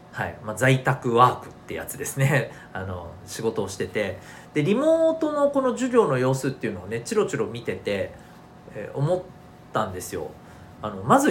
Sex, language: male, Japanese